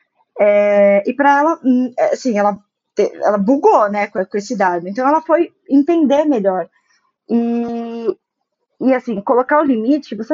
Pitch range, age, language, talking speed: 205-280 Hz, 20-39, Portuguese, 140 wpm